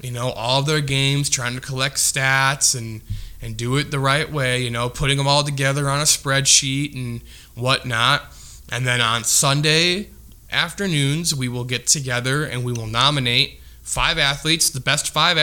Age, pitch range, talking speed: 20-39, 125-145 Hz, 175 wpm